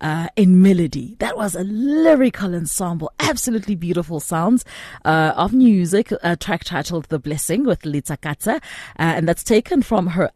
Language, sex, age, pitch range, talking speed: English, female, 30-49, 155-215 Hz, 170 wpm